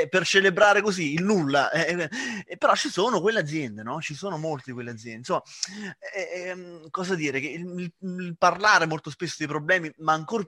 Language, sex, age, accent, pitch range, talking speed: Italian, male, 20-39, native, 140-200 Hz, 200 wpm